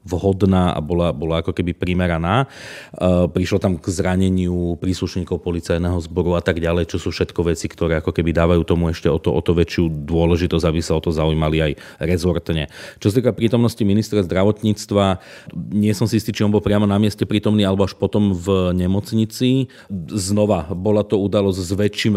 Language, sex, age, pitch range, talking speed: Slovak, male, 30-49, 85-100 Hz, 185 wpm